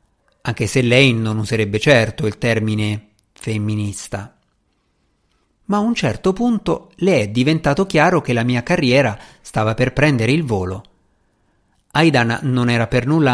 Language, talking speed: Italian, 145 wpm